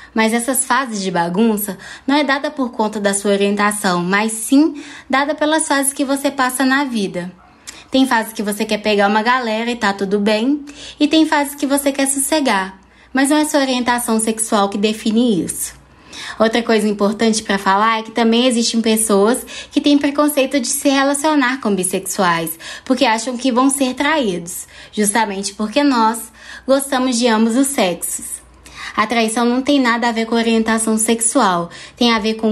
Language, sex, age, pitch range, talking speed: Portuguese, female, 20-39, 210-270 Hz, 180 wpm